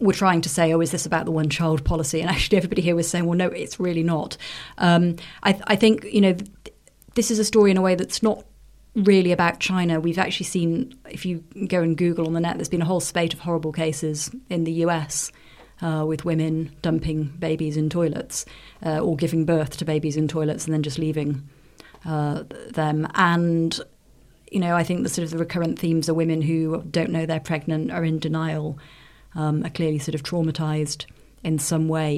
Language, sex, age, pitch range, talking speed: English, female, 30-49, 160-195 Hz, 215 wpm